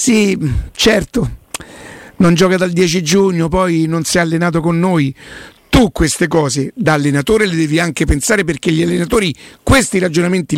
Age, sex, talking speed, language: 50-69, male, 160 wpm, Italian